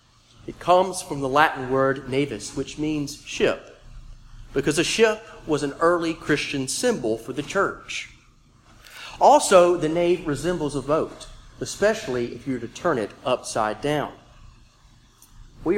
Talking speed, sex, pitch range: 140 wpm, male, 120-170 Hz